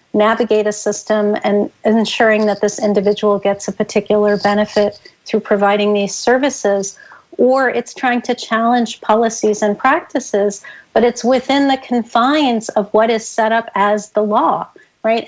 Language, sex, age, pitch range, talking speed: English, female, 40-59, 210-245 Hz, 150 wpm